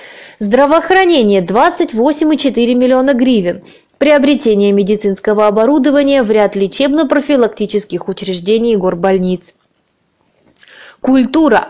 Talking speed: 70 wpm